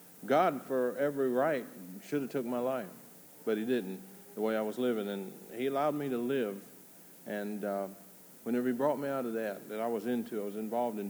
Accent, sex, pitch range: American, male, 100-125 Hz